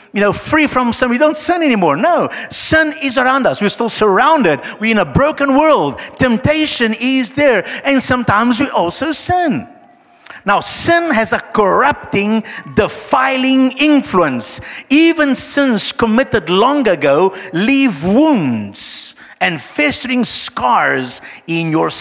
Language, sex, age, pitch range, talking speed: English, male, 50-69, 200-280 Hz, 135 wpm